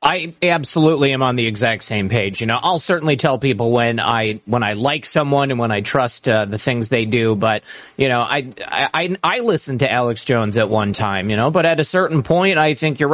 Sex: male